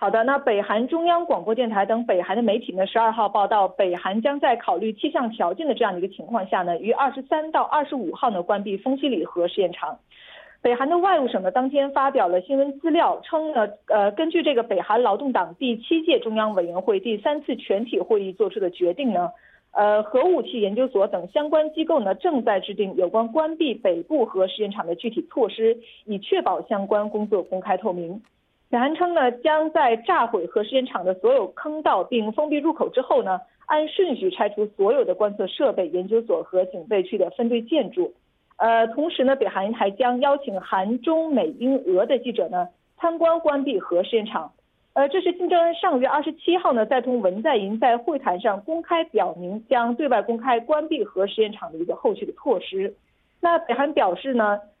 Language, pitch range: Korean, 205-315 Hz